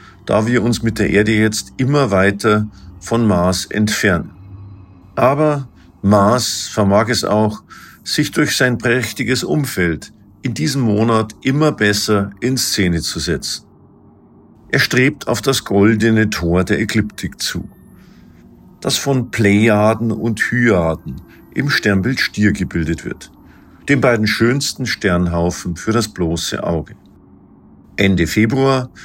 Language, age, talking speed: German, 50-69, 125 wpm